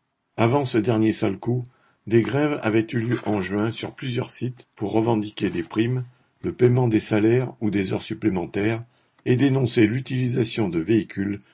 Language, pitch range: French, 100-125 Hz